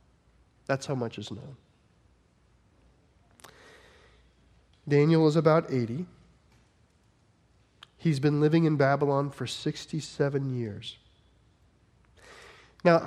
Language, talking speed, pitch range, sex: English, 85 wpm, 120-160 Hz, male